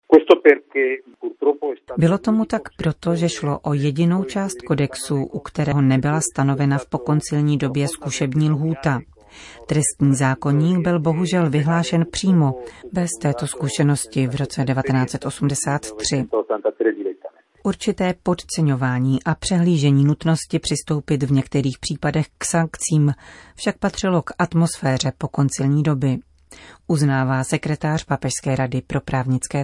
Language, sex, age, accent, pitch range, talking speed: Czech, female, 40-59, native, 140-170 Hz, 110 wpm